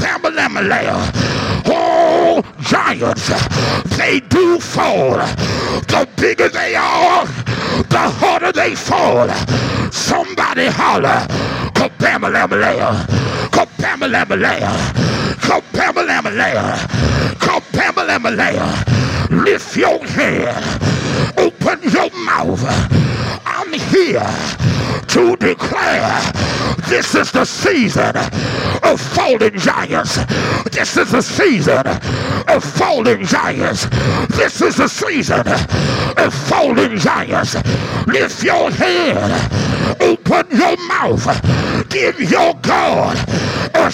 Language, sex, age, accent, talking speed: English, male, 50-69, American, 85 wpm